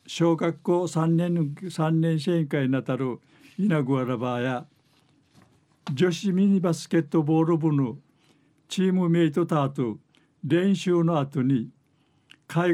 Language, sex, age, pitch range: Japanese, male, 60-79, 145-170 Hz